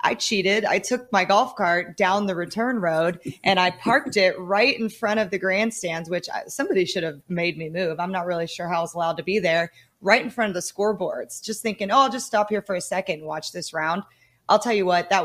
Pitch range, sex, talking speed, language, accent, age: 170-215 Hz, female, 250 wpm, English, American, 30-49